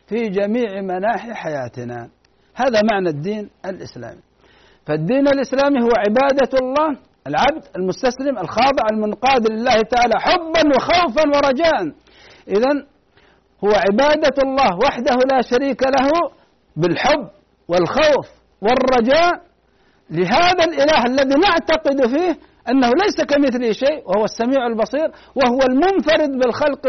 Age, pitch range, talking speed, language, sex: 60-79, 235-305 Hz, 105 wpm, Arabic, male